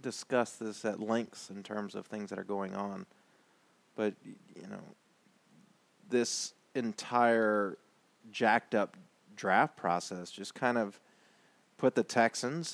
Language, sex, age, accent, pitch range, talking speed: English, male, 30-49, American, 95-115 Hz, 125 wpm